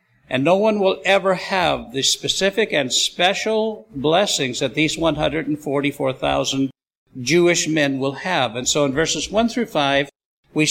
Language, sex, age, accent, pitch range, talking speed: English, male, 60-79, American, 130-165 Hz, 145 wpm